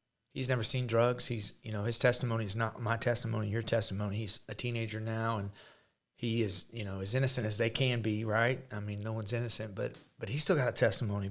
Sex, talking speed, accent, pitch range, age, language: male, 230 wpm, American, 105-120 Hz, 30-49, English